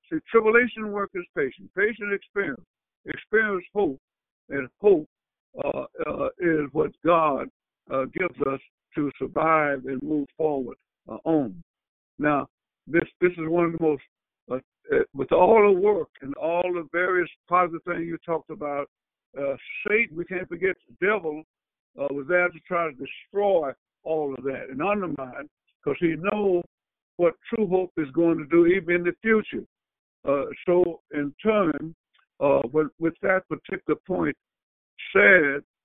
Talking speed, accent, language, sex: 155 wpm, American, English, male